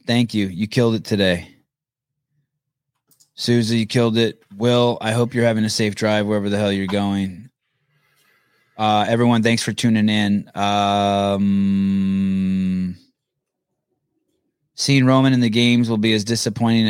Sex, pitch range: male, 100-125 Hz